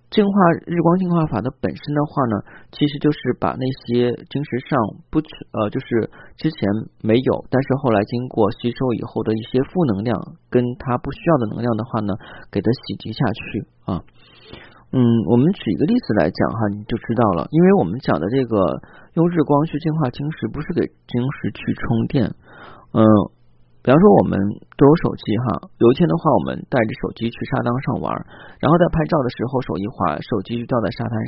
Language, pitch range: Chinese, 110-145 Hz